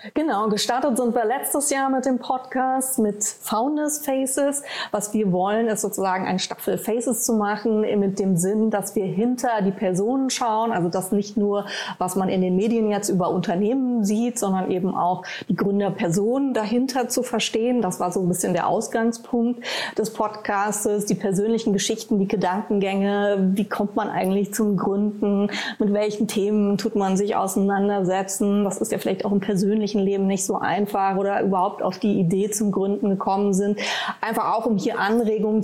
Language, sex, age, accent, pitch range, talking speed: German, female, 20-39, German, 195-230 Hz, 175 wpm